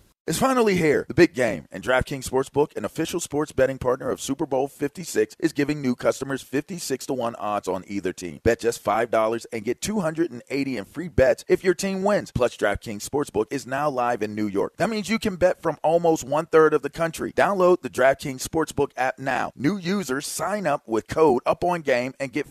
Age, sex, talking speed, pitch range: 40-59, male, 205 wpm, 115-165 Hz